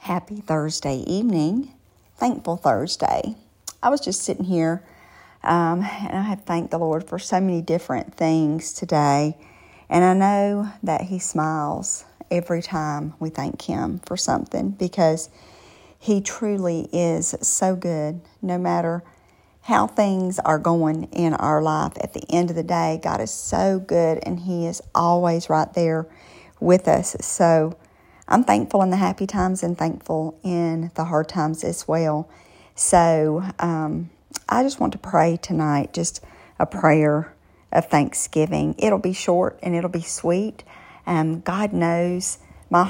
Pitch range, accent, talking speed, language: 160-185 Hz, American, 150 wpm, English